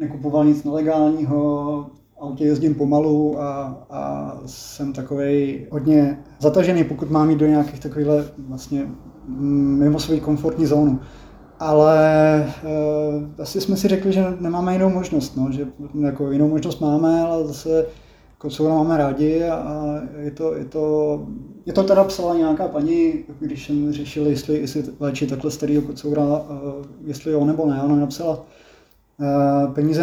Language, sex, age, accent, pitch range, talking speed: Czech, male, 20-39, native, 140-160 Hz, 150 wpm